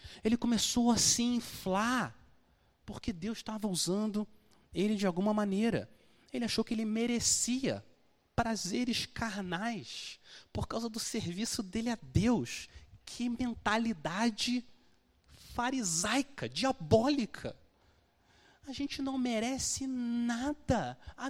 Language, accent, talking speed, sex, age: Portuguese, Brazilian, 105 wpm, male, 30-49